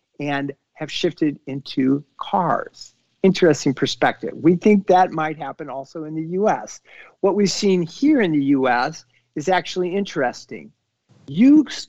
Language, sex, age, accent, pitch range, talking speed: English, male, 50-69, American, 145-195 Hz, 135 wpm